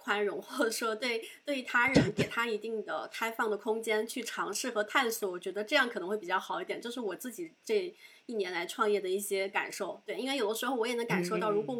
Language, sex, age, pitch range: Chinese, female, 20-39, 215-290 Hz